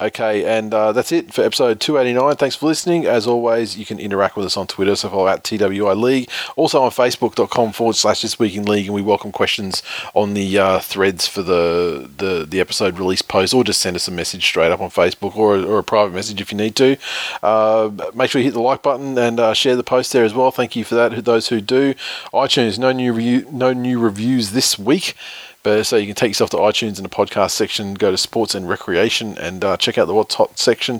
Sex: male